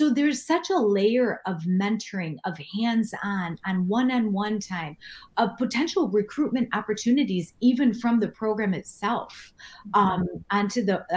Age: 30-49